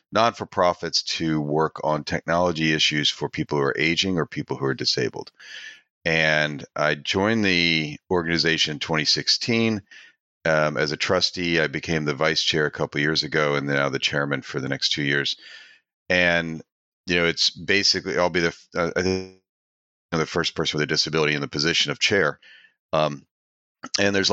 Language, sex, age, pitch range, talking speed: English, male, 40-59, 75-90 Hz, 185 wpm